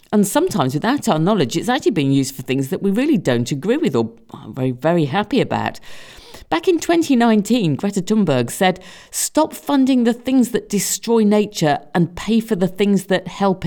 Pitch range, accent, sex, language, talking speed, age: 135-220 Hz, British, female, English, 190 wpm, 50-69